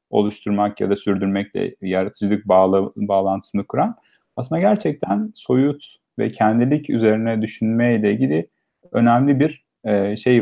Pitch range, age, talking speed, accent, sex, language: 110-150 Hz, 40-59, 105 wpm, native, male, Turkish